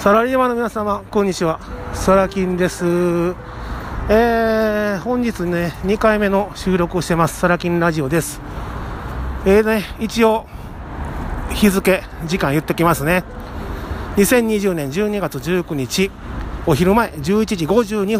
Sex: male